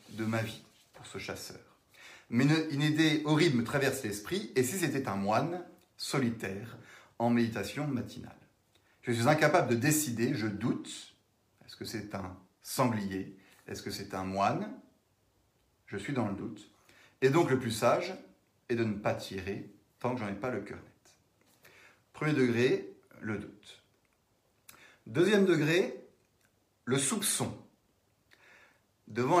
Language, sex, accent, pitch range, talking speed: French, male, French, 110-150 Hz, 145 wpm